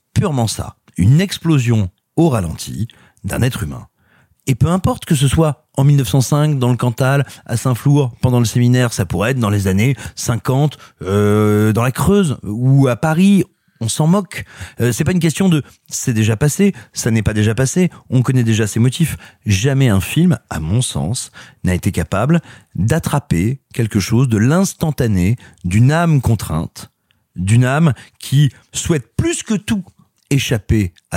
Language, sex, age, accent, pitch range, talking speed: French, male, 40-59, French, 110-145 Hz, 175 wpm